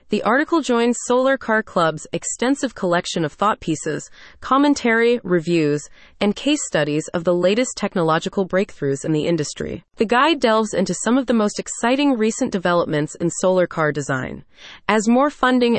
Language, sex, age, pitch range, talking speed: English, female, 30-49, 170-235 Hz, 160 wpm